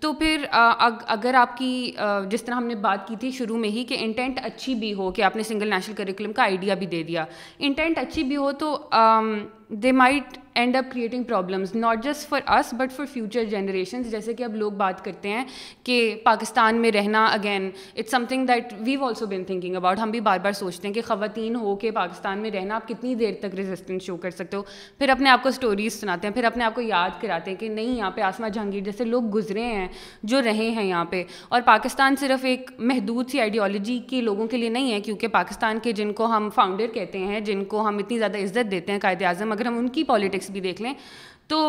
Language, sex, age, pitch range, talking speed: Urdu, female, 20-39, 205-250 Hz, 230 wpm